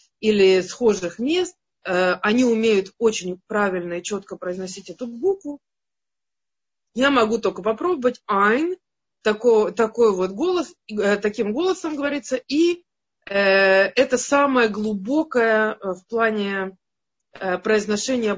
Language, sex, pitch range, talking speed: Russian, female, 190-260 Hz, 105 wpm